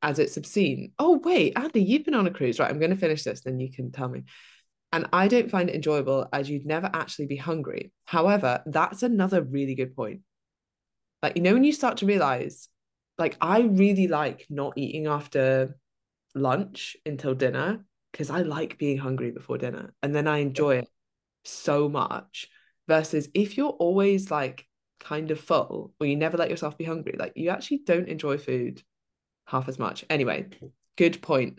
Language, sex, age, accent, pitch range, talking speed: English, female, 20-39, British, 135-180 Hz, 190 wpm